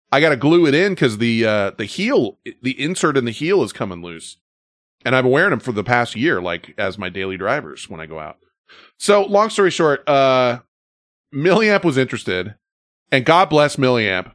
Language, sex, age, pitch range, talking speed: English, male, 30-49, 90-135 Hz, 200 wpm